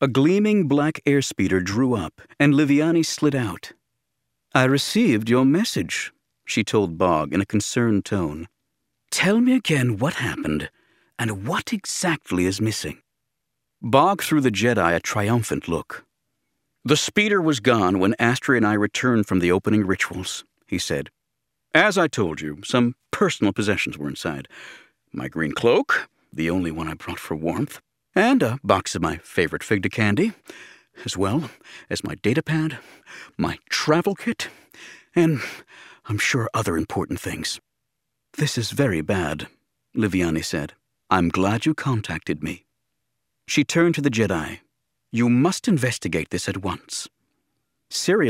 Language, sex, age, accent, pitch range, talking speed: English, male, 50-69, American, 95-140 Hz, 150 wpm